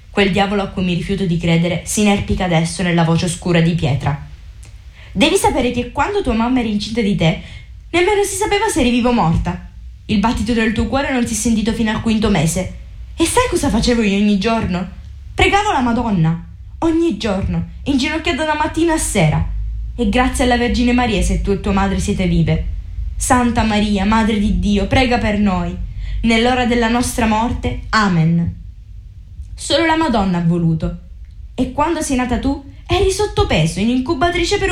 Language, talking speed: Italian, 180 wpm